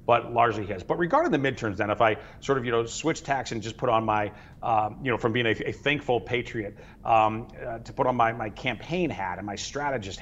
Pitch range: 110-130 Hz